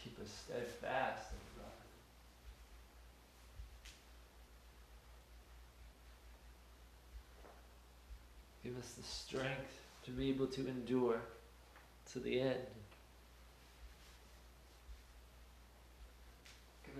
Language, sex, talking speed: English, male, 65 wpm